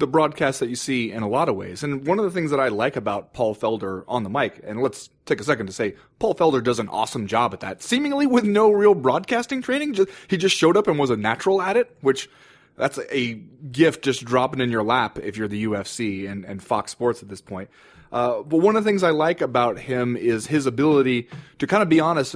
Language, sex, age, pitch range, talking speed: English, male, 30-49, 105-140 Hz, 250 wpm